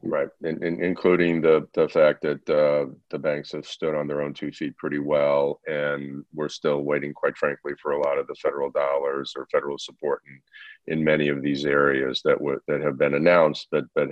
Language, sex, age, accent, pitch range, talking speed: English, male, 40-59, American, 75-95 Hz, 215 wpm